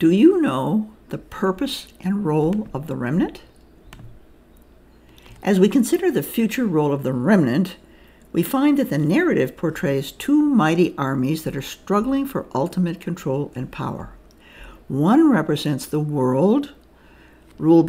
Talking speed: 140 wpm